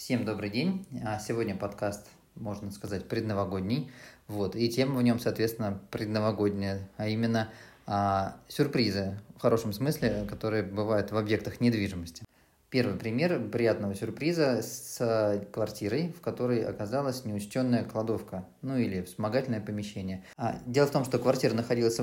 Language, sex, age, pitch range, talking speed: Russian, male, 20-39, 105-125 Hz, 130 wpm